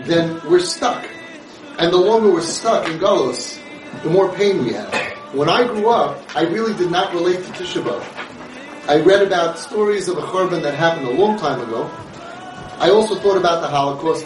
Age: 30-49